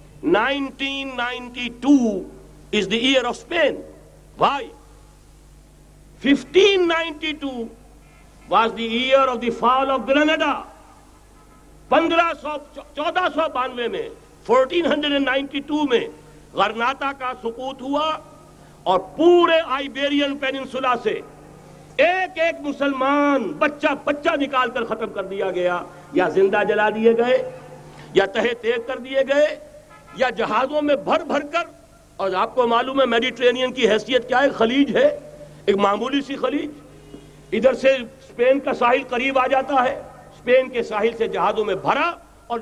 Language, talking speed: Urdu, 135 wpm